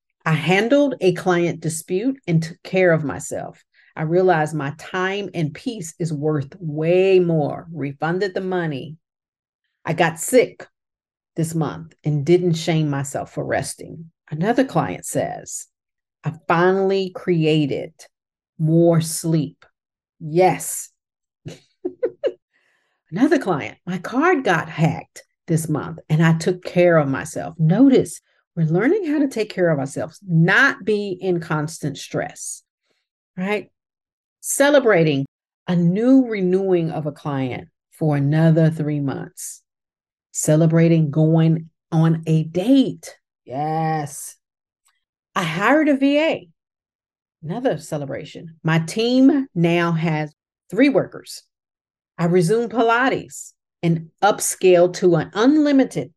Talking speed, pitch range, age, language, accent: 115 wpm, 155-200 Hz, 40-59, English, American